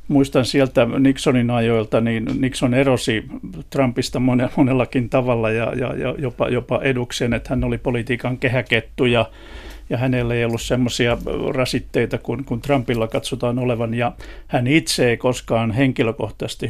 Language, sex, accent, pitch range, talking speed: Finnish, male, native, 115-135 Hz, 145 wpm